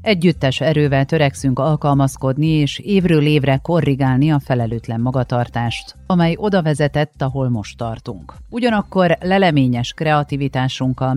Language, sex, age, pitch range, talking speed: Hungarian, female, 40-59, 125-160 Hz, 110 wpm